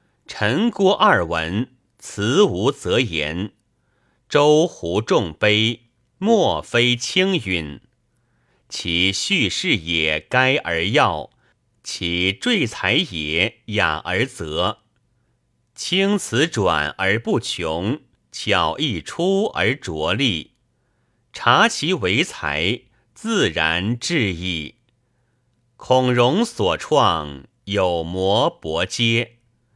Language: Chinese